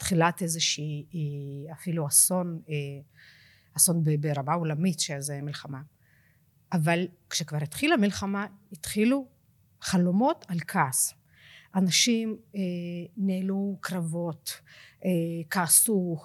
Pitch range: 165-230 Hz